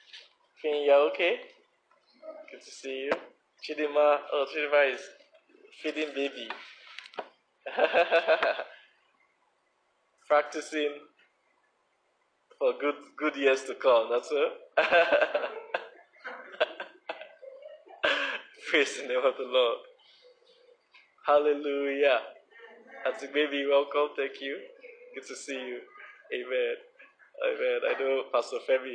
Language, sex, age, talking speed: English, male, 20-39, 90 wpm